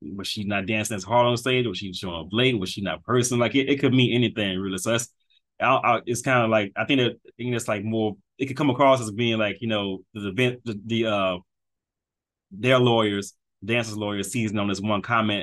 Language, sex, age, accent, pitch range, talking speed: English, male, 20-39, American, 100-120 Hz, 255 wpm